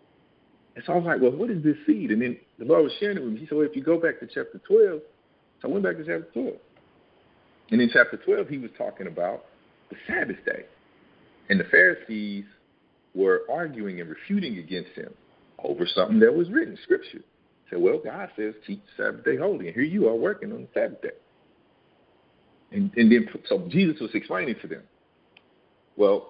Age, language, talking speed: 50-69, English, 210 wpm